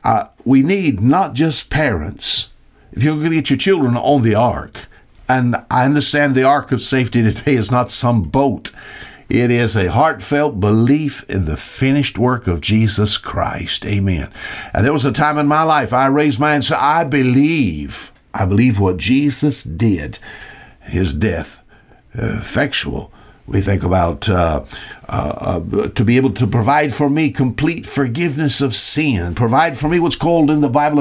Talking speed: 170 wpm